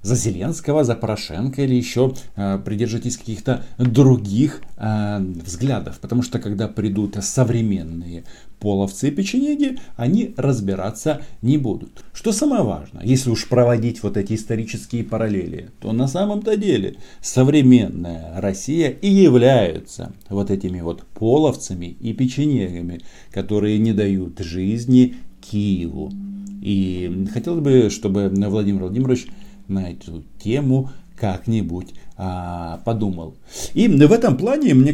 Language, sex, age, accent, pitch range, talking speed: Russian, male, 40-59, native, 95-130 Hz, 120 wpm